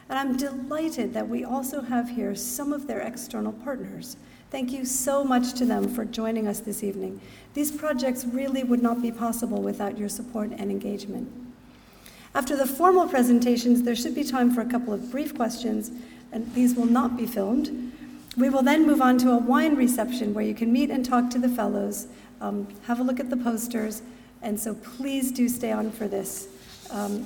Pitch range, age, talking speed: 230-270 Hz, 50-69, 200 wpm